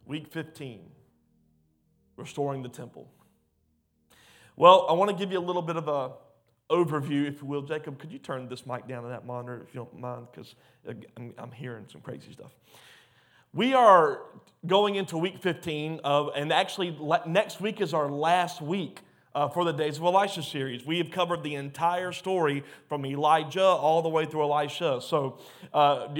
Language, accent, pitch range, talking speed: English, American, 140-185 Hz, 185 wpm